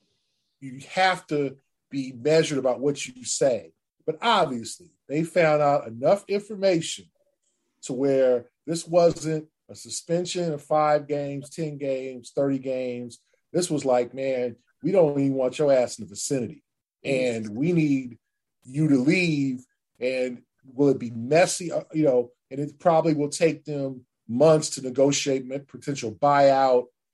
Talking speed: 145 wpm